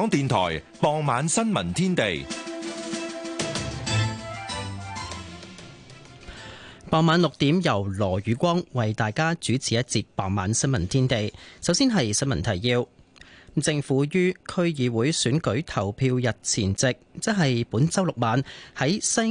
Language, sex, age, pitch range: Chinese, male, 30-49, 115-165 Hz